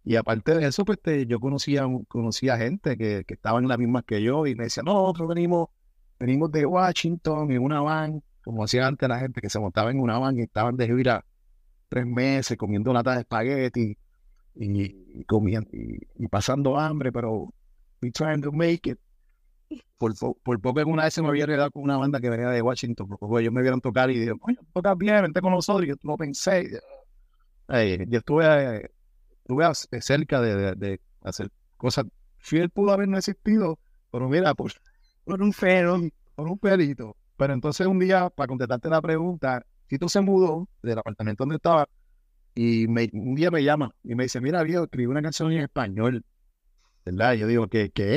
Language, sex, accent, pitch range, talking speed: Spanish, male, Venezuelan, 115-165 Hz, 200 wpm